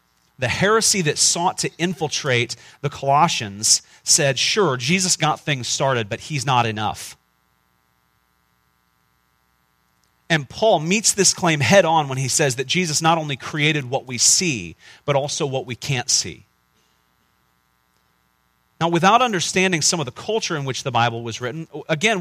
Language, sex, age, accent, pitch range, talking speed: English, male, 40-59, American, 100-160 Hz, 150 wpm